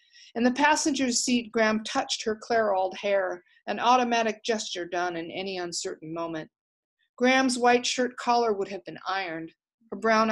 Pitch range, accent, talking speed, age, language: 195-260 Hz, American, 155 wpm, 50-69, English